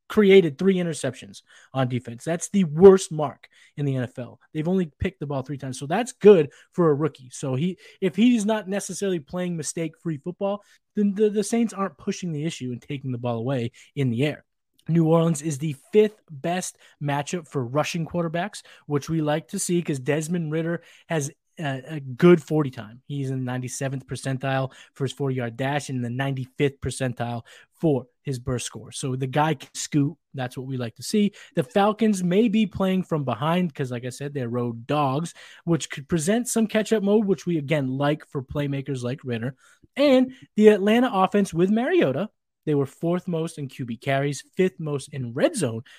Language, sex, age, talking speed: English, male, 20-39, 195 wpm